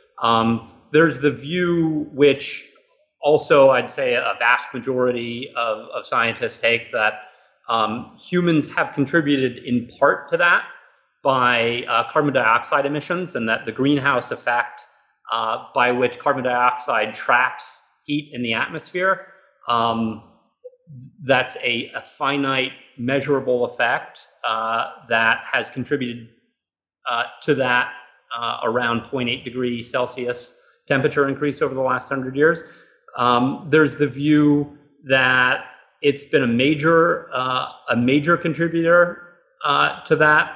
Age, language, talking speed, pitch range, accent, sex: 30-49, English, 125 wpm, 125-165 Hz, American, male